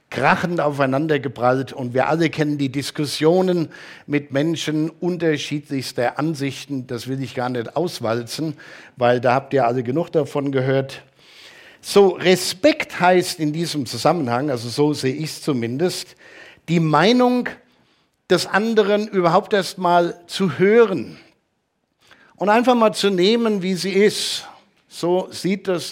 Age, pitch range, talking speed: 50-69, 135-185 Hz, 135 wpm